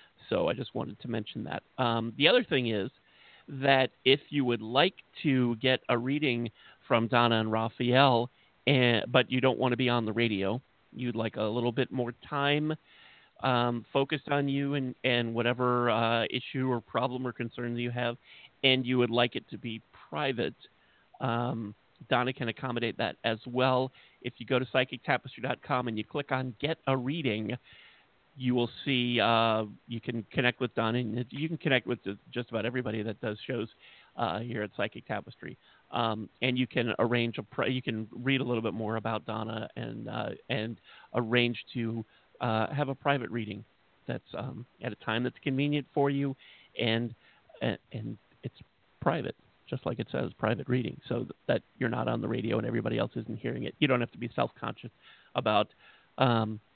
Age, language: 40-59, English